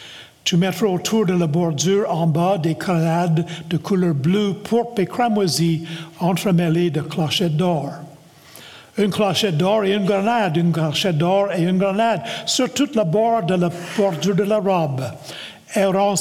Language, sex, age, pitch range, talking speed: French, male, 60-79, 165-205 Hz, 150 wpm